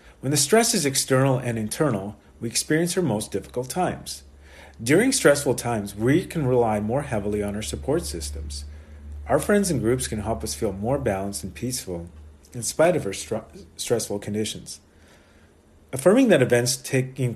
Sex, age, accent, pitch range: male, 40-59, American, 100-130 Hz